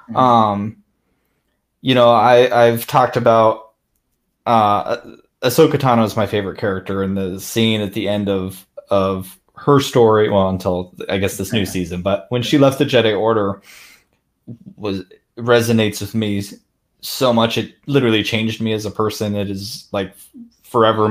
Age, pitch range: 20-39, 100-120 Hz